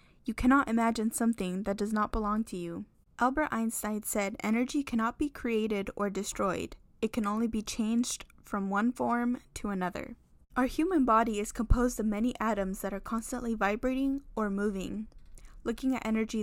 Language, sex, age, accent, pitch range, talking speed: English, female, 10-29, American, 200-240 Hz, 170 wpm